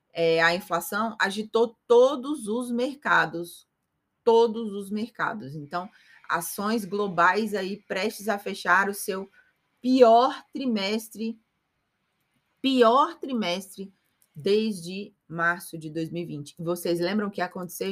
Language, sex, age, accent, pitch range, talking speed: Portuguese, female, 30-49, Brazilian, 170-225 Hz, 105 wpm